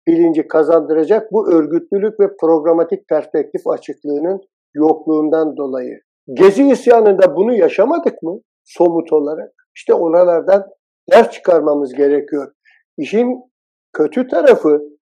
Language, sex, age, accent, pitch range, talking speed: Turkish, male, 60-79, native, 160-240 Hz, 100 wpm